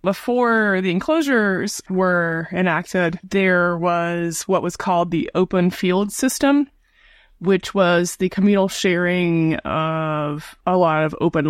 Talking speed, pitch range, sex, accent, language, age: 125 wpm, 170-200 Hz, female, American, English, 20-39